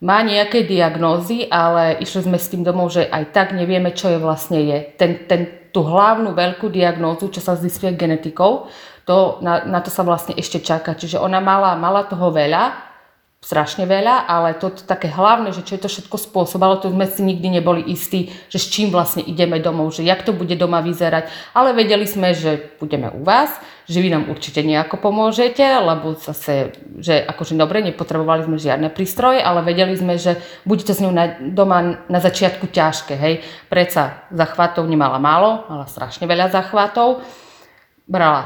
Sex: female